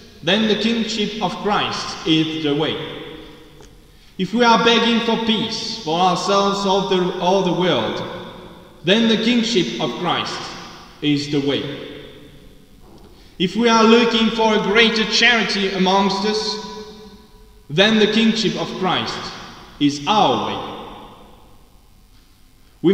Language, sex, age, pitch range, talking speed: English, male, 20-39, 170-215 Hz, 125 wpm